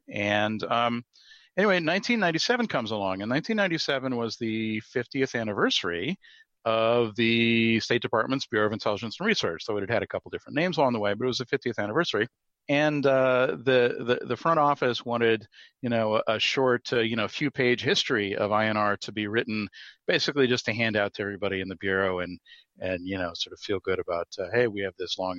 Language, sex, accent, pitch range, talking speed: English, male, American, 105-125 Hz, 205 wpm